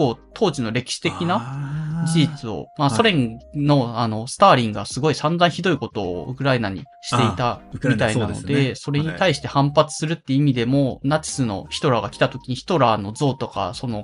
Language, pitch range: Japanese, 115-150 Hz